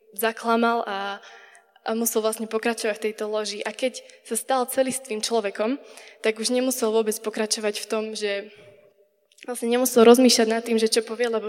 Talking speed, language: 165 wpm, Czech